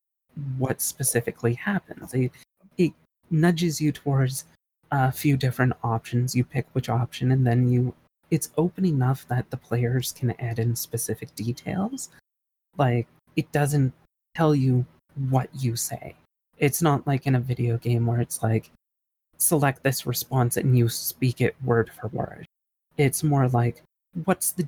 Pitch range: 120-145 Hz